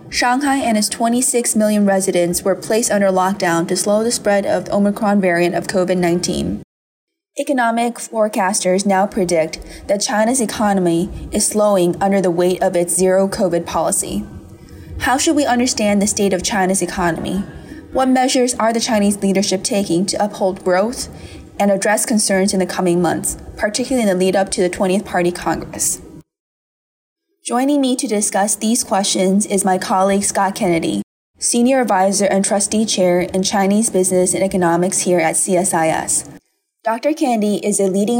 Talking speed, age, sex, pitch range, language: 155 wpm, 20-39, female, 185-220 Hz, English